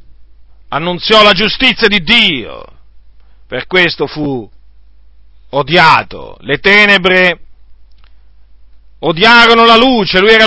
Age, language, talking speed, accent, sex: 40-59, Italian, 90 wpm, native, male